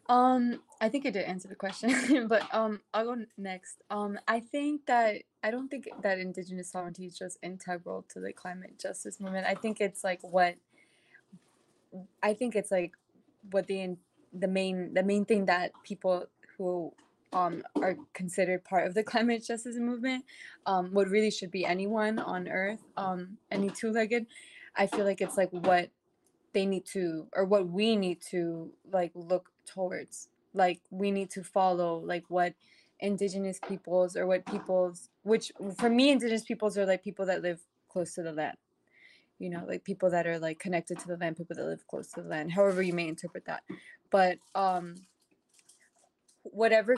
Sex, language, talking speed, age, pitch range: female, English, 180 wpm, 20-39, 180-210 Hz